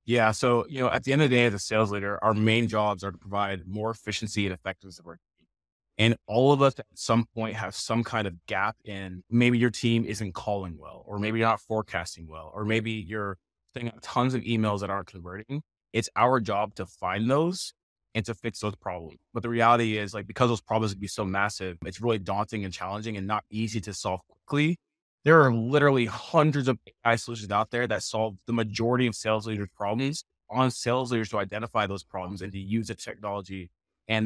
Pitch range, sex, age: 100-125 Hz, male, 20-39